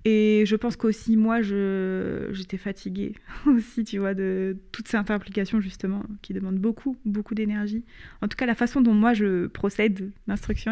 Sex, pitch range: female, 205-230 Hz